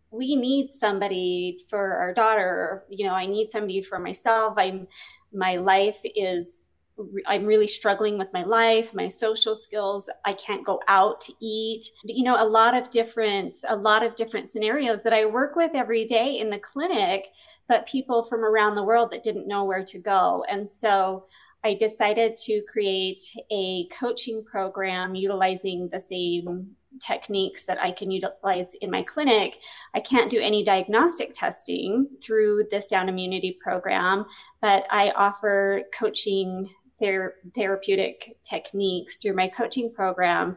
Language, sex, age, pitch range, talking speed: English, female, 30-49, 190-225 Hz, 155 wpm